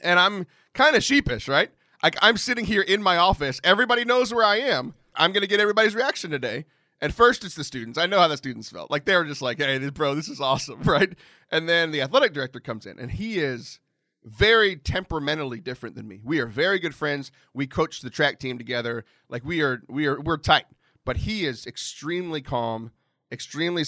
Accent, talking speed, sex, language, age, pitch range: American, 215 wpm, male, English, 30-49, 135-185 Hz